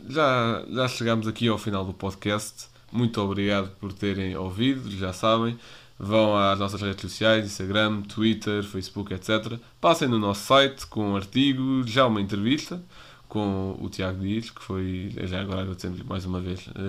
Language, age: Portuguese, 20-39